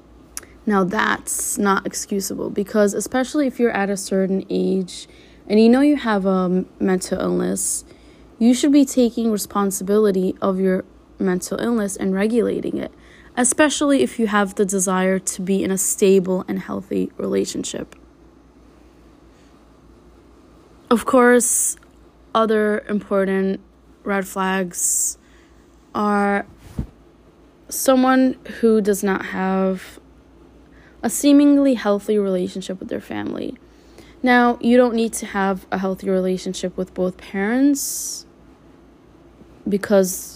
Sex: female